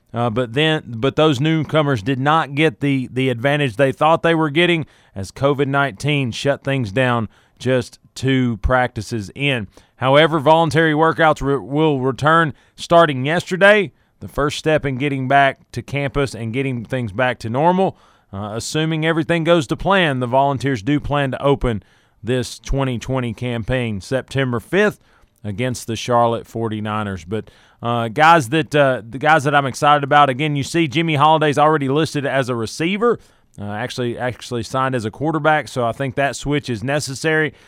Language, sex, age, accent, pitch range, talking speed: English, male, 30-49, American, 120-155 Hz, 165 wpm